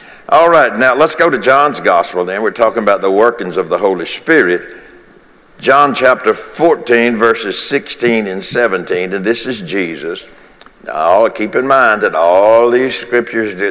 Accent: American